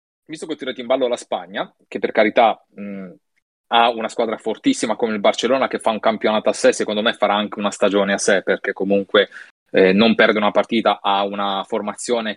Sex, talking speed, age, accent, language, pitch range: male, 210 wpm, 20-39, native, Italian, 100-130 Hz